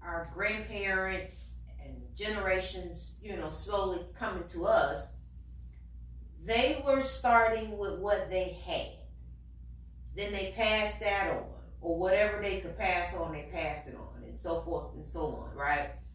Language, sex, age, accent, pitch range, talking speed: English, female, 30-49, American, 150-220 Hz, 145 wpm